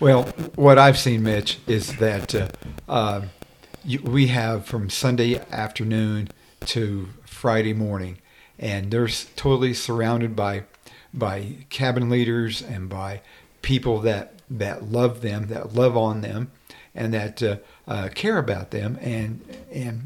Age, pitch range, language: 50-69, 110-130 Hz, English